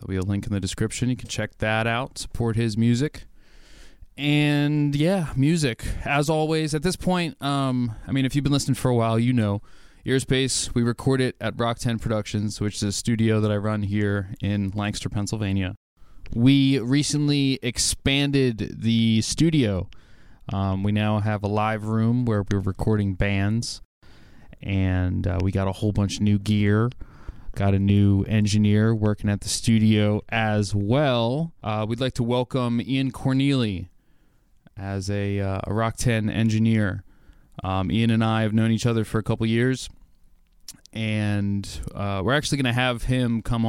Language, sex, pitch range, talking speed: English, male, 100-125 Hz, 170 wpm